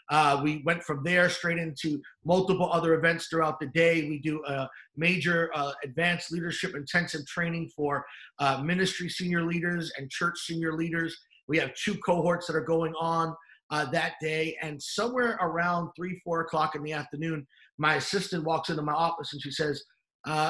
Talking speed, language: 180 wpm, English